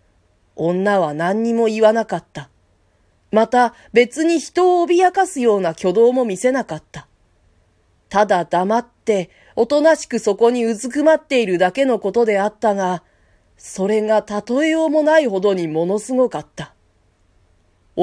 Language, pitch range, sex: Japanese, 155-255 Hz, female